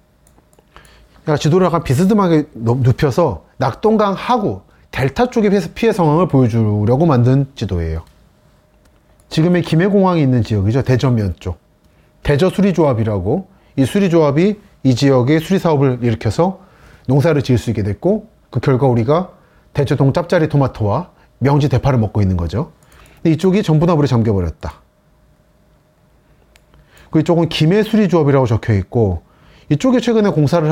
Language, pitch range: Korean, 120-170 Hz